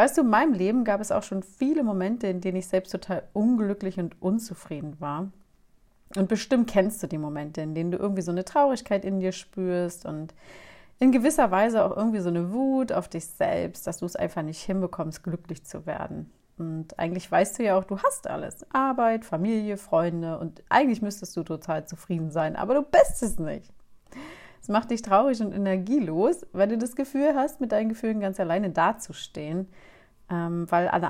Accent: German